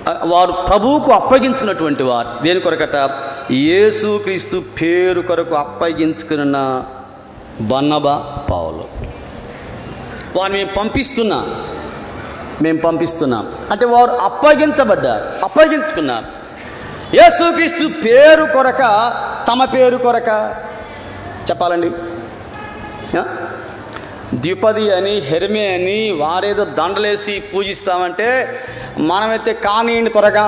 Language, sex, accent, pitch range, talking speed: Telugu, male, native, 170-285 Hz, 80 wpm